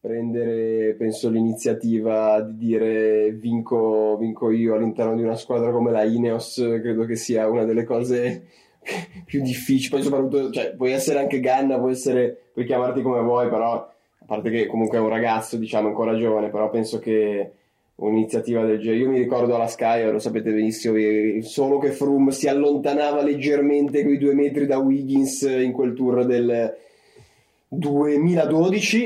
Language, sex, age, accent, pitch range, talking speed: Italian, male, 20-39, native, 115-135 Hz, 160 wpm